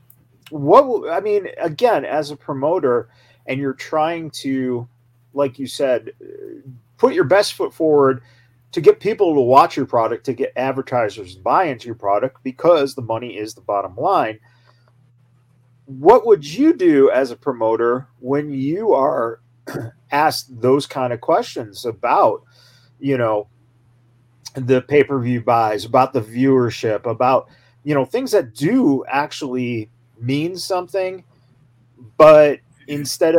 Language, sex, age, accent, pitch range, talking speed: English, male, 40-59, American, 120-150 Hz, 135 wpm